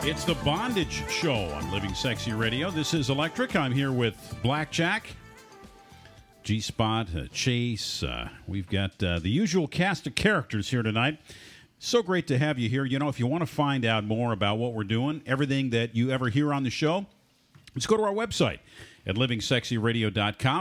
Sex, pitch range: male, 115-155 Hz